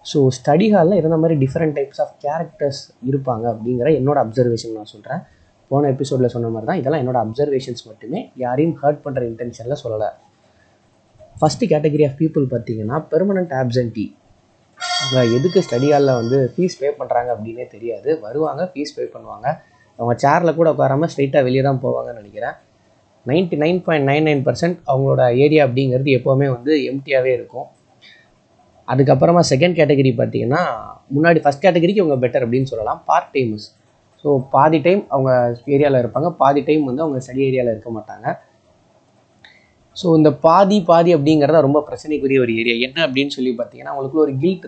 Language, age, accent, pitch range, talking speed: Tamil, 20-39, native, 125-155 Hz, 155 wpm